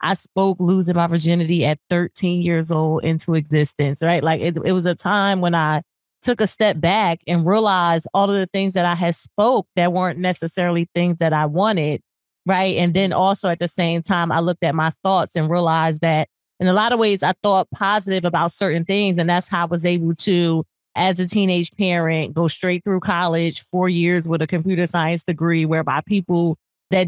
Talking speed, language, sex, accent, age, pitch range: 205 wpm, English, female, American, 30-49, 165-190 Hz